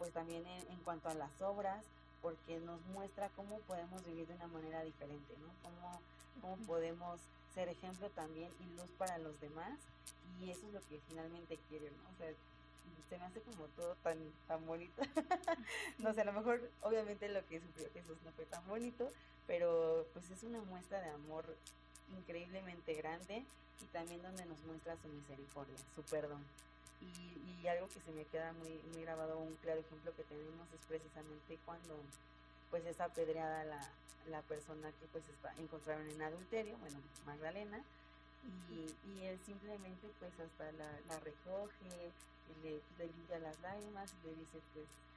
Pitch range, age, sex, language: 155-185 Hz, 20-39, female, Spanish